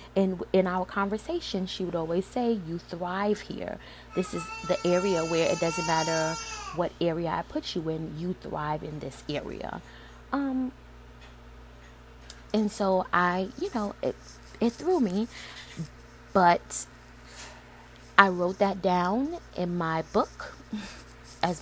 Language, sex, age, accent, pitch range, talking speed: English, female, 20-39, American, 165-200 Hz, 135 wpm